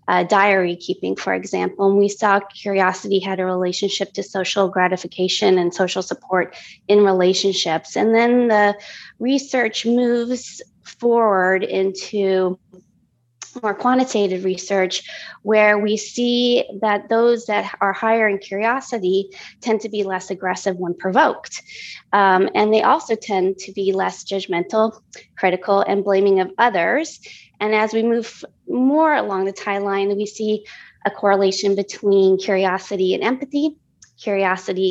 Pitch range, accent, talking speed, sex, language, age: 185-215 Hz, American, 135 wpm, female, English, 20-39